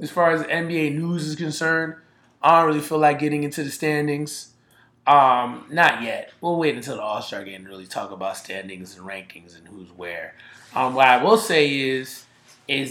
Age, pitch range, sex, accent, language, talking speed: 20-39, 140-170 Hz, male, American, English, 195 wpm